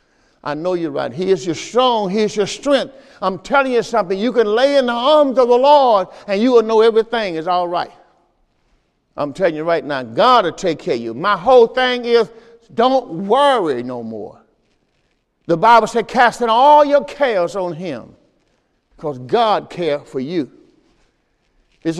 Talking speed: 185 wpm